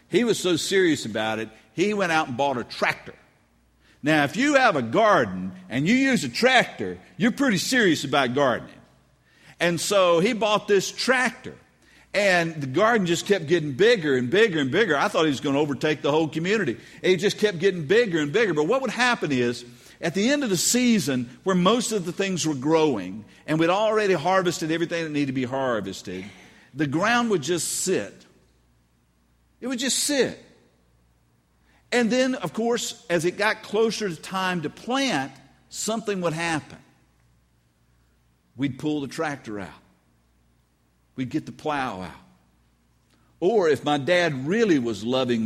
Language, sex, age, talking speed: English, male, 50-69, 175 wpm